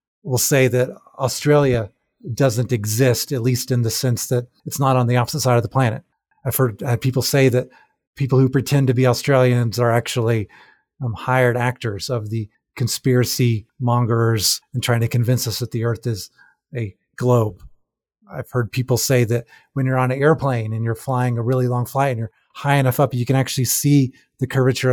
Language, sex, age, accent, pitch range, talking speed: English, male, 30-49, American, 120-140 Hz, 195 wpm